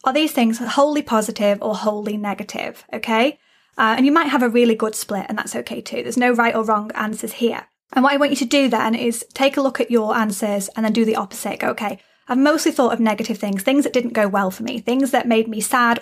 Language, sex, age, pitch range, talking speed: English, female, 20-39, 215-255 Hz, 260 wpm